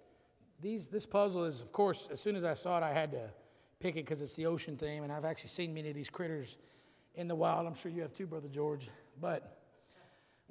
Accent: American